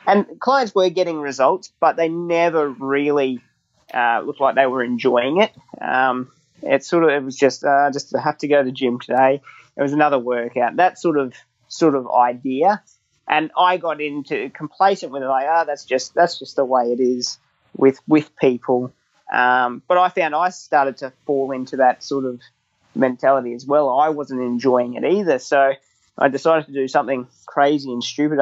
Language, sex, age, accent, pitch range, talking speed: English, male, 30-49, Australian, 130-150 Hz, 195 wpm